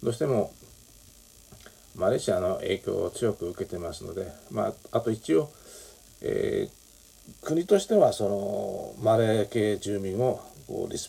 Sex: male